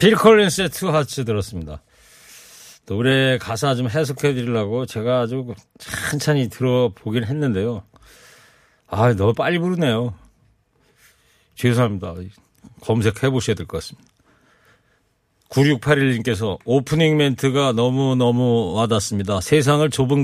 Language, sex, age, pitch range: Korean, male, 40-59, 110-145 Hz